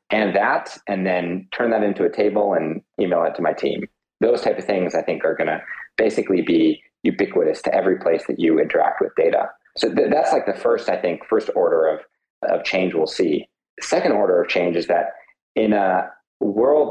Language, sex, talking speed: English, male, 215 wpm